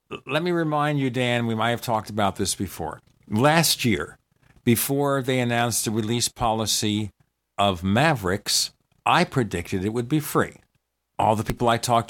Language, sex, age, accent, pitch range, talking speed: English, male, 50-69, American, 105-140 Hz, 165 wpm